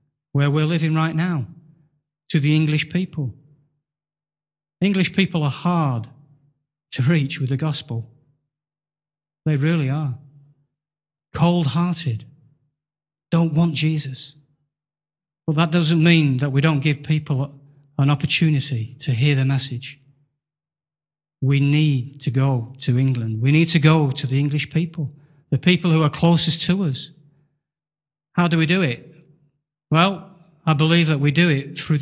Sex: male